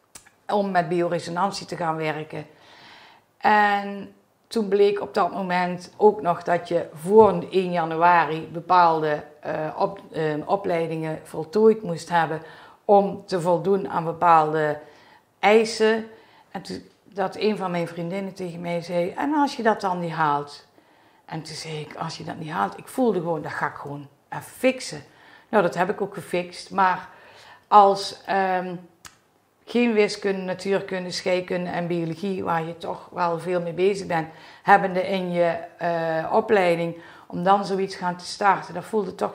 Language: Dutch